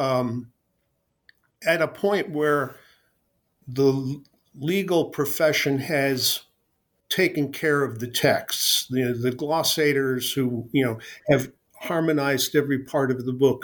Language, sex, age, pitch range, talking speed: English, male, 50-69, 125-145 Hz, 125 wpm